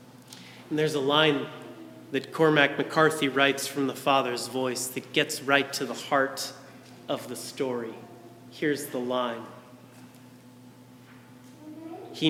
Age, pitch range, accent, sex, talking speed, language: 30-49, 125-150 Hz, American, male, 120 wpm, English